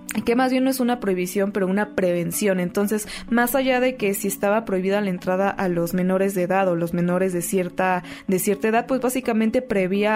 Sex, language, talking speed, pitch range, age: female, Spanish, 215 wpm, 195-245 Hz, 20-39